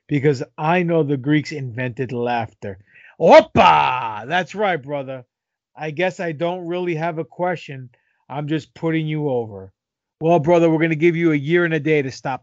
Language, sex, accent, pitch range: English, male, American, 130-170 Hz